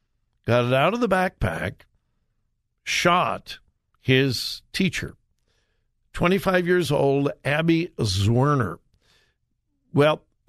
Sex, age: male, 60-79